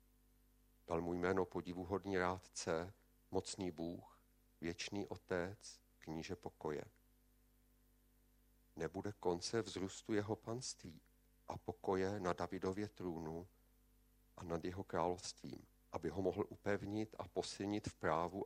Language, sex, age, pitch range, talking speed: Czech, male, 50-69, 90-110 Hz, 105 wpm